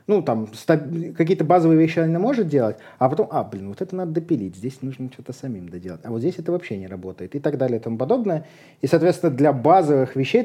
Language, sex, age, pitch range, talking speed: Russian, male, 30-49, 120-155 Hz, 230 wpm